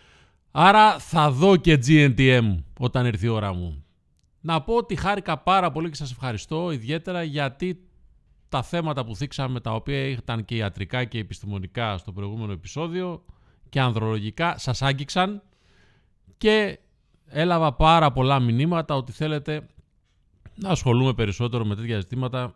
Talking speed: 140 wpm